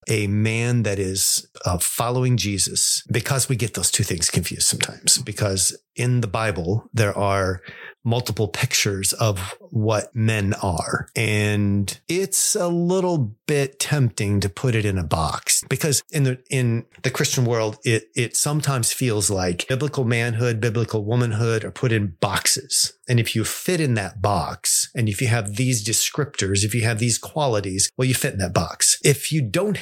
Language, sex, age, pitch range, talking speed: English, male, 40-59, 105-130 Hz, 175 wpm